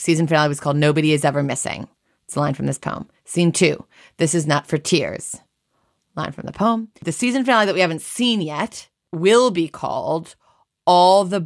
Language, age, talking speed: English, 30-49, 200 wpm